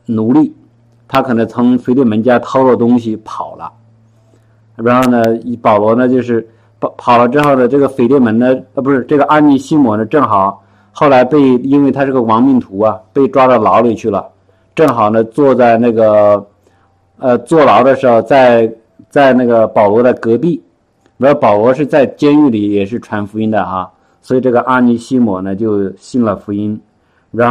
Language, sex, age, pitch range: Chinese, male, 50-69, 105-125 Hz